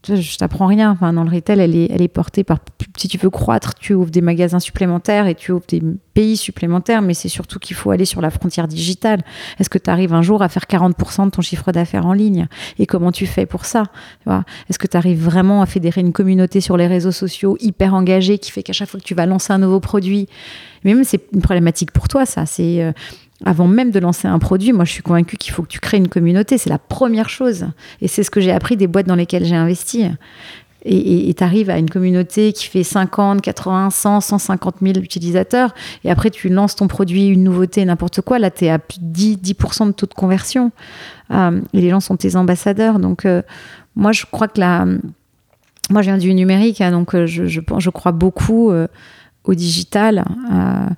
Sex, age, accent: female, 30-49, French